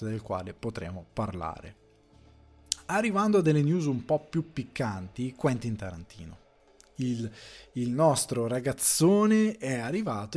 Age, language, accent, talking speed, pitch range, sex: 20-39, Italian, native, 115 wpm, 110-135 Hz, male